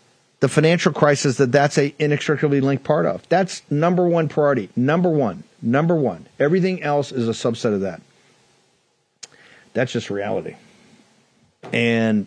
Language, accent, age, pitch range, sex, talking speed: English, American, 50-69, 125-160 Hz, male, 140 wpm